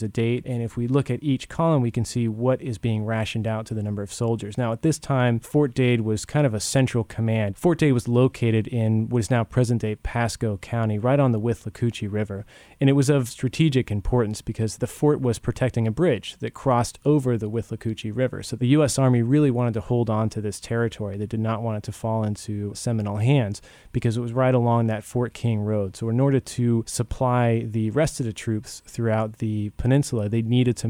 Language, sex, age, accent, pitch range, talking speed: English, male, 20-39, American, 110-130 Hz, 225 wpm